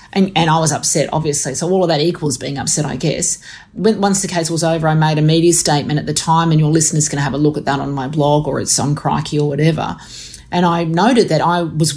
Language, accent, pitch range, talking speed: English, Australian, 155-190 Hz, 265 wpm